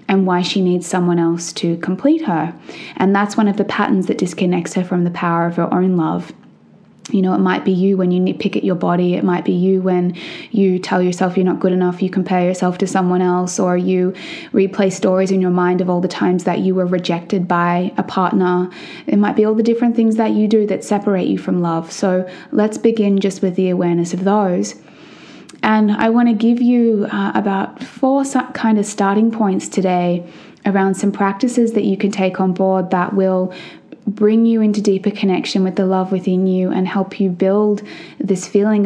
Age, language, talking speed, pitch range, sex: 20-39, English, 215 wpm, 180-205 Hz, female